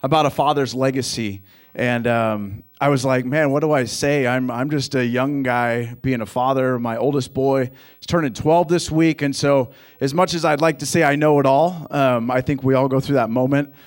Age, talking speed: 30-49, 230 wpm